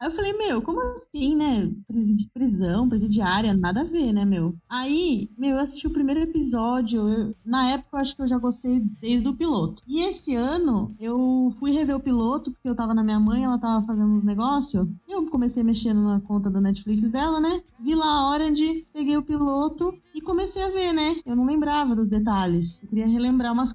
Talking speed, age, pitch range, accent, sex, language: 210 wpm, 20-39, 210-275 Hz, Brazilian, female, Portuguese